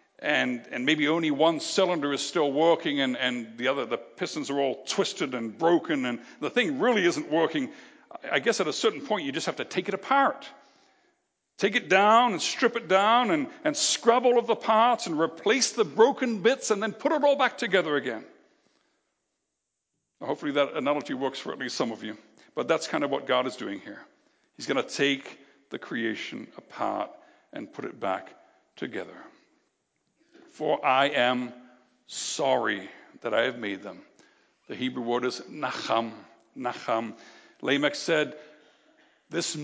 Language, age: English, 60-79